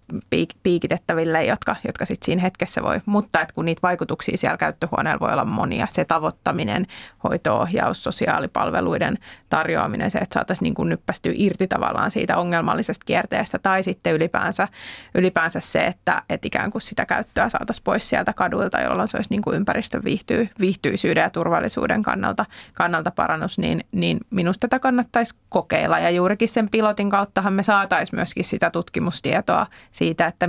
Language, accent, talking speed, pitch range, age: Finnish, native, 150 wpm, 175-215 Hz, 30-49